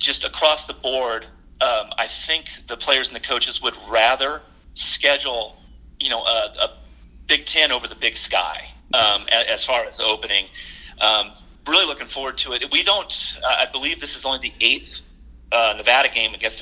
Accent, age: American, 30-49